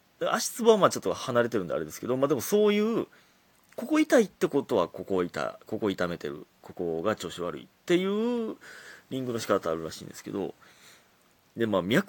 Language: Japanese